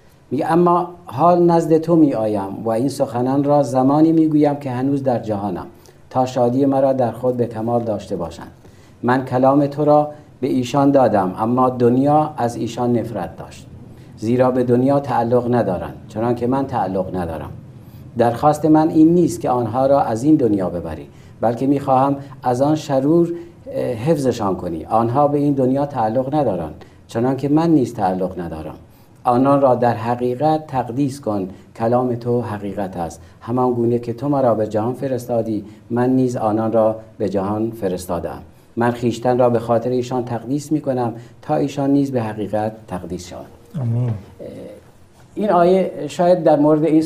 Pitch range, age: 110-140 Hz, 50-69